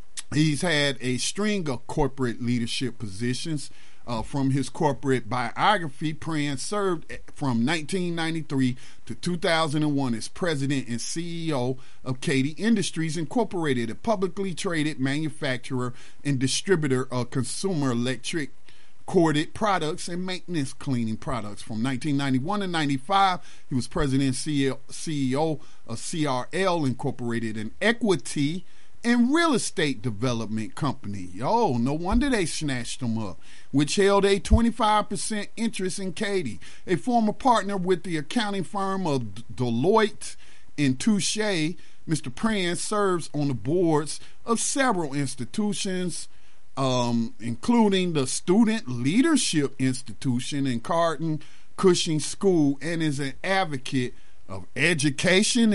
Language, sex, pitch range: English, male, 130-185 Hz